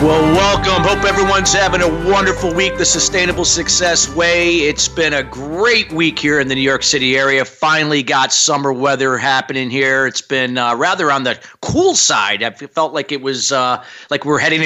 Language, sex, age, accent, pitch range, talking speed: English, male, 40-59, American, 130-160 Hz, 190 wpm